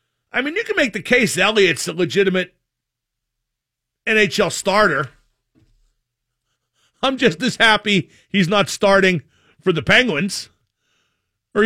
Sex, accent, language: male, American, English